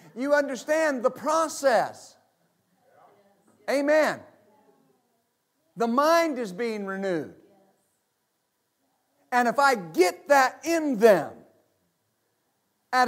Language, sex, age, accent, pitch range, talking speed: English, male, 50-69, American, 230-290 Hz, 85 wpm